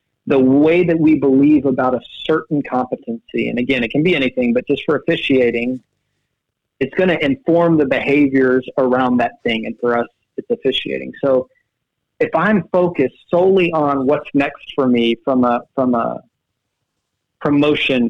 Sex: male